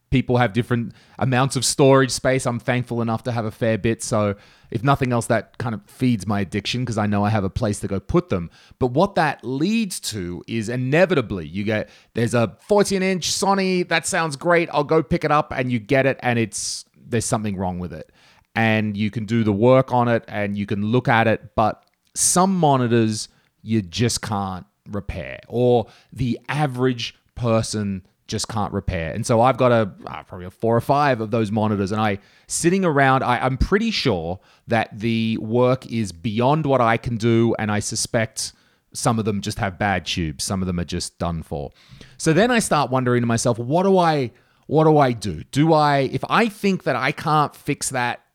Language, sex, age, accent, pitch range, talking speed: English, male, 30-49, Australian, 110-140 Hz, 205 wpm